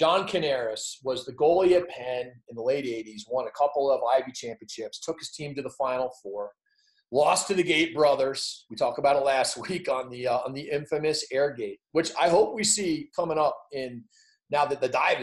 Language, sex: English, male